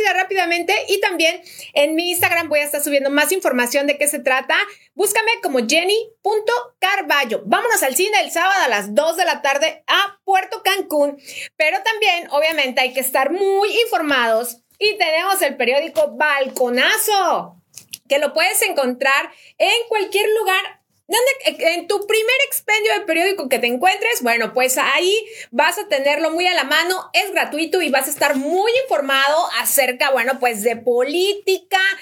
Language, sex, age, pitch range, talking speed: Spanish, female, 30-49, 280-390 Hz, 160 wpm